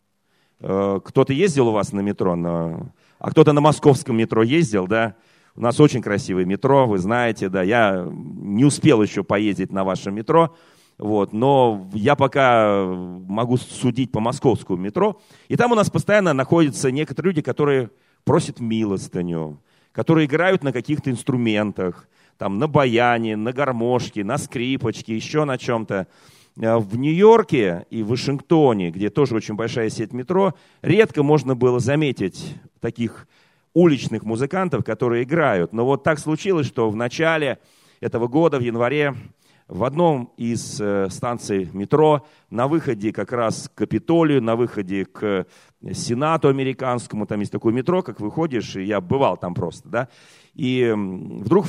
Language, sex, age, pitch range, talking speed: Russian, male, 40-59, 110-150 Hz, 145 wpm